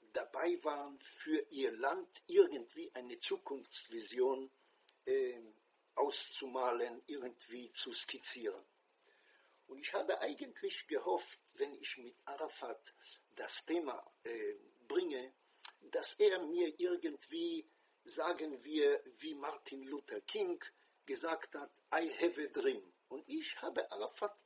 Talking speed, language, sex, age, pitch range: 115 wpm, English, male, 50-69, 325-435 Hz